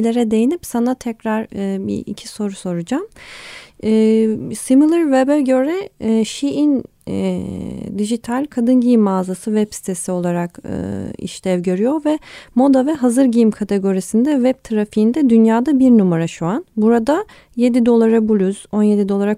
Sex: female